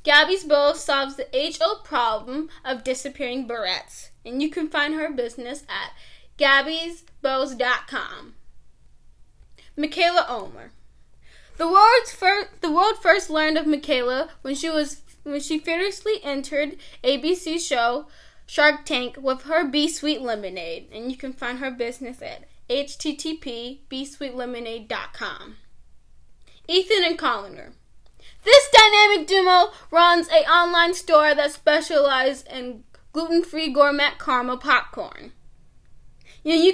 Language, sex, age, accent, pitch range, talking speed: English, female, 10-29, American, 265-335 Hz, 120 wpm